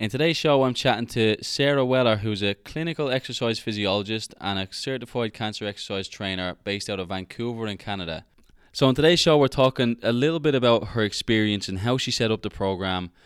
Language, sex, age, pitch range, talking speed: English, male, 10-29, 90-110 Hz, 200 wpm